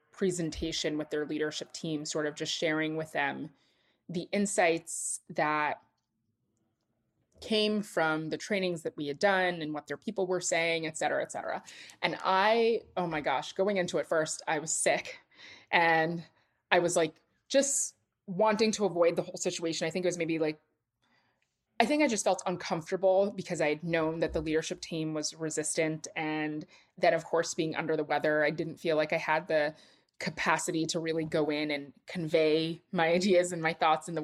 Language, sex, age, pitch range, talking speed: English, female, 20-39, 155-180 Hz, 185 wpm